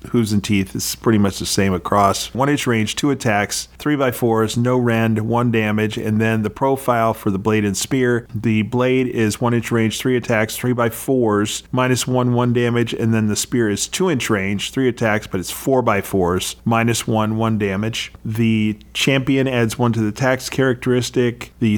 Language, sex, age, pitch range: English, male, 40-59, 105-125 Hz